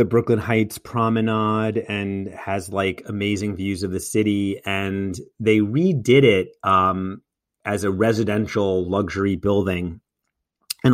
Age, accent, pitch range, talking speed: 30-49, American, 95-125 Hz, 125 wpm